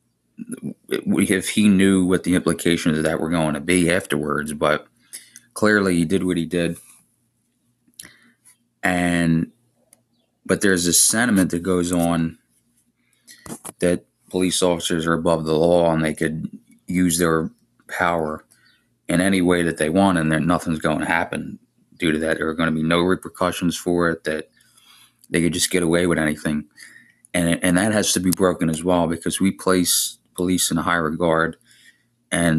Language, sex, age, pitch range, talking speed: English, male, 30-49, 80-95 Hz, 165 wpm